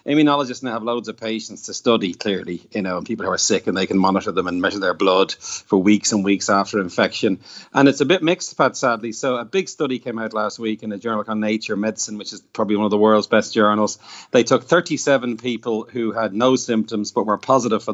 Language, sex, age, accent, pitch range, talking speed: English, male, 40-59, Irish, 105-130 Hz, 250 wpm